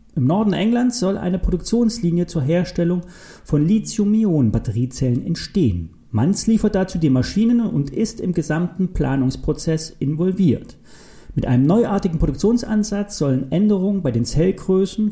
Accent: German